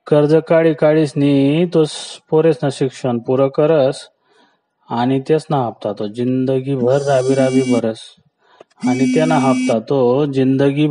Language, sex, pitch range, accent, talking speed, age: Marathi, male, 125-150 Hz, native, 125 wpm, 30-49